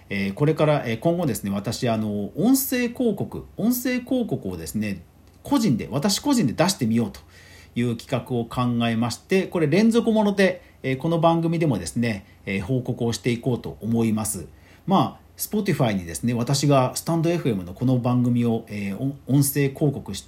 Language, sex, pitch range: Japanese, male, 105-150 Hz